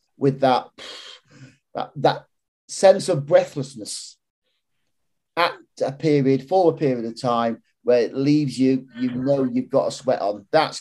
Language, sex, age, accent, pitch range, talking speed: English, male, 30-49, British, 125-170 Hz, 150 wpm